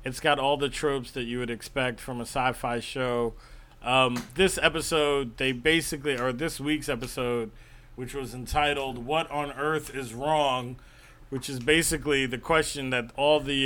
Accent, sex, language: American, male, English